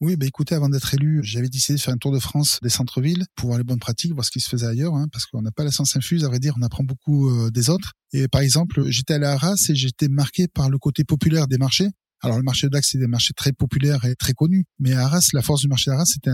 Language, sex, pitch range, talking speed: French, male, 130-150 Hz, 300 wpm